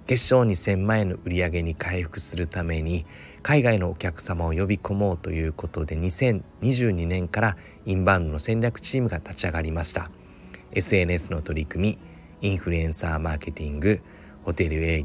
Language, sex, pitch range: Japanese, male, 85-110 Hz